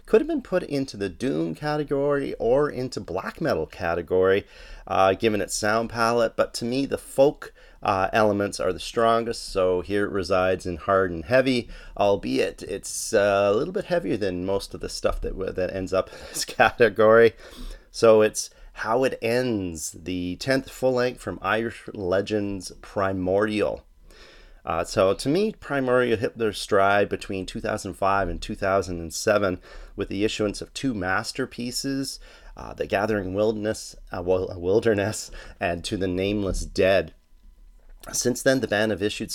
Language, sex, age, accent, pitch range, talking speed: English, male, 30-49, American, 95-120 Hz, 155 wpm